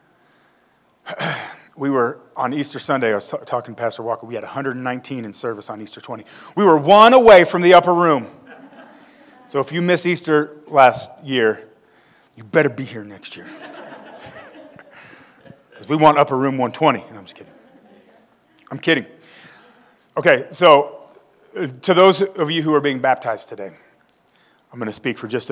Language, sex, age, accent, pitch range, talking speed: English, male, 30-49, American, 130-175 Hz, 165 wpm